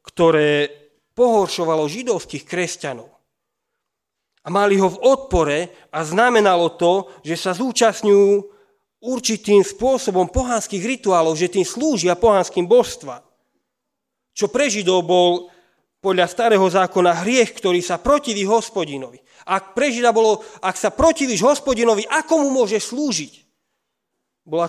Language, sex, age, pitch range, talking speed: Slovak, male, 40-59, 150-215 Hz, 120 wpm